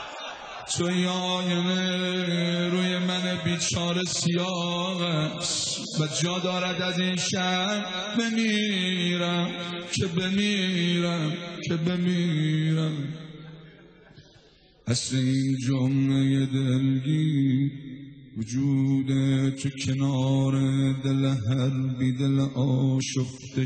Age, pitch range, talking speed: 50-69, 135-185 Hz, 65 wpm